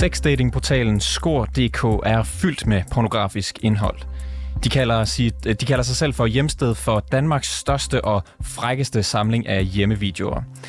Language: Danish